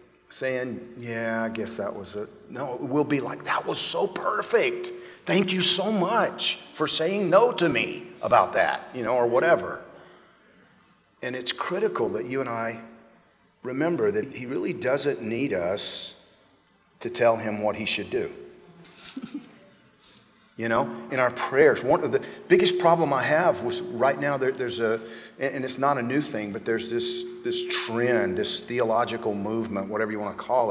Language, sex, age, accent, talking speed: English, male, 40-59, American, 170 wpm